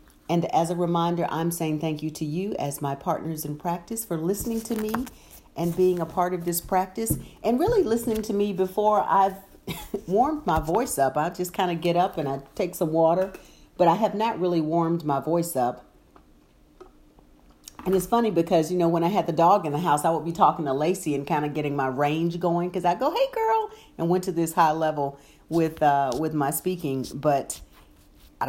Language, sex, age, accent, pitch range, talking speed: English, female, 50-69, American, 150-185 Hz, 215 wpm